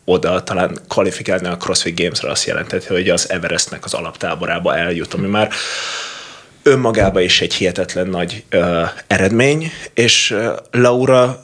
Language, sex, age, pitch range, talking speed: Hungarian, male, 30-49, 95-125 Hz, 135 wpm